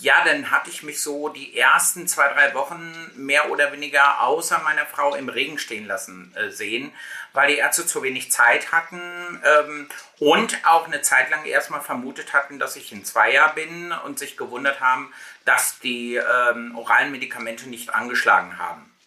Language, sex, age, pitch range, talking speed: German, male, 50-69, 135-165 Hz, 175 wpm